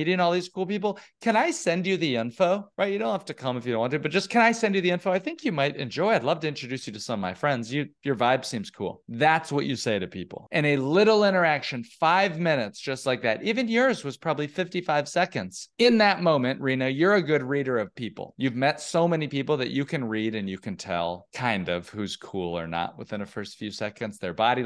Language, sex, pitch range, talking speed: English, male, 125-180 Hz, 255 wpm